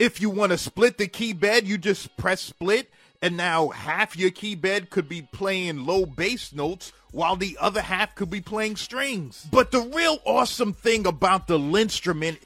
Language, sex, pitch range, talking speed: English, male, 185-245 Hz, 195 wpm